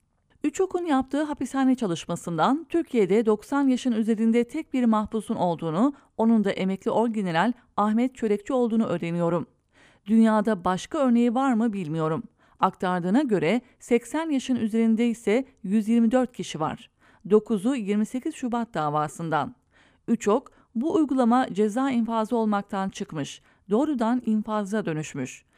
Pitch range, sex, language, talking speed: 195-255 Hz, female, English, 115 wpm